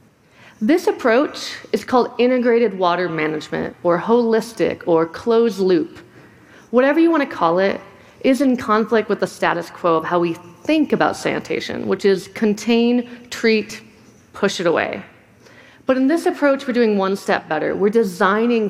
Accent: American